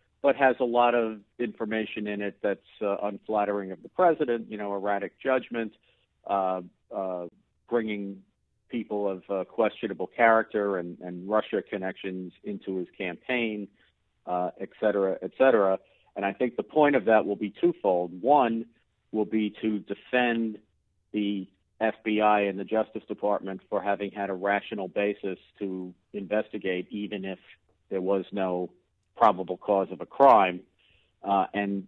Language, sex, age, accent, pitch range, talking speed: English, male, 50-69, American, 95-115 Hz, 150 wpm